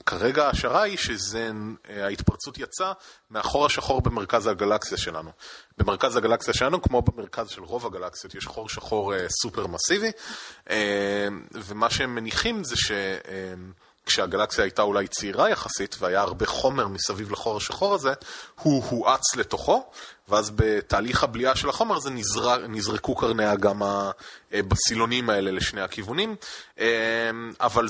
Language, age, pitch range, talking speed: Hebrew, 30-49, 100-130 Hz, 125 wpm